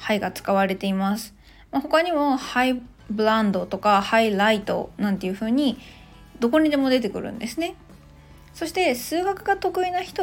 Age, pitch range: 20-39, 210-295 Hz